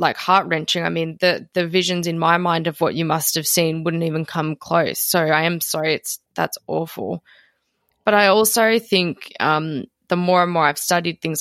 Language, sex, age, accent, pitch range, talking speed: English, female, 20-39, Australian, 155-180 Hz, 205 wpm